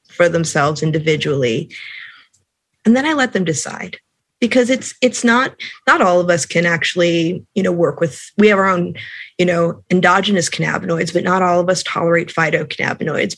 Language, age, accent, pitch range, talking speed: English, 20-39, American, 165-205 Hz, 170 wpm